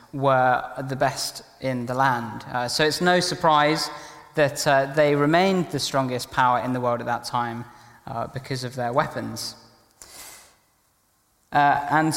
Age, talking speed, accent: 20-39, 155 wpm, British